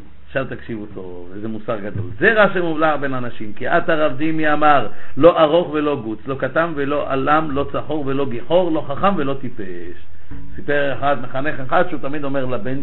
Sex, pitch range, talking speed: male, 120-185 Hz, 185 wpm